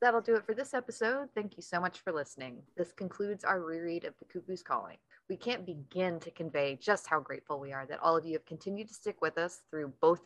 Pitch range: 150-200 Hz